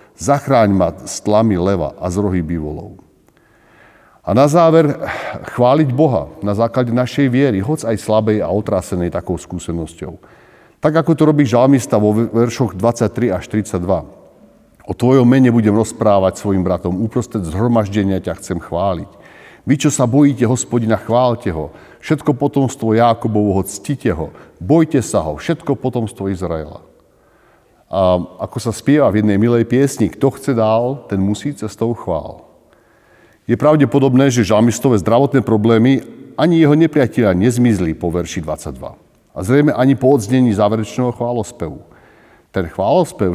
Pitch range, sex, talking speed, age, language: 95-130 Hz, male, 140 wpm, 50-69, Slovak